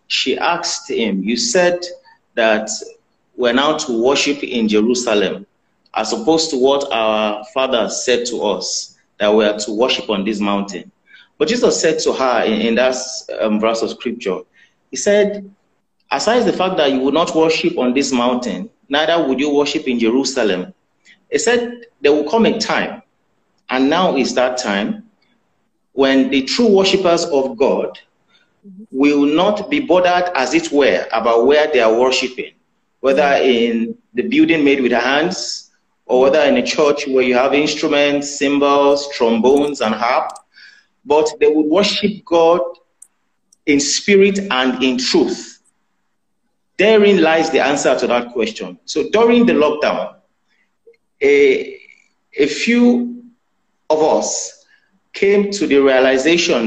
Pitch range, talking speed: 130-205 Hz, 150 wpm